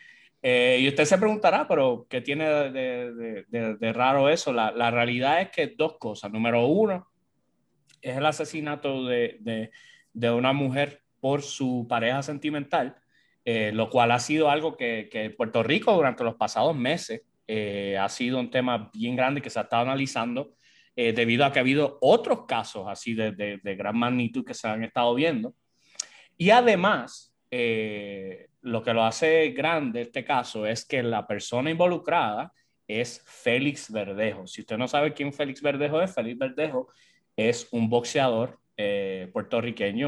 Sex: male